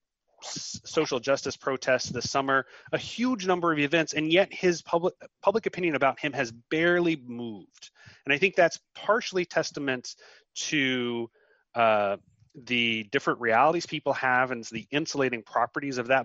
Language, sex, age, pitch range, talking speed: English, male, 30-49, 115-165 Hz, 150 wpm